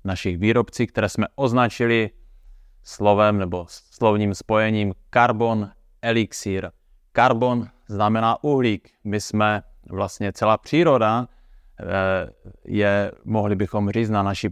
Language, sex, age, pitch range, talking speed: Czech, male, 30-49, 100-115 Hz, 105 wpm